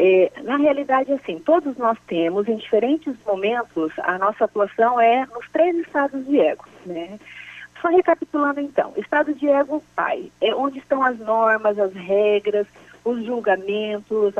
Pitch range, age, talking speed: 220-295 Hz, 40-59, 150 wpm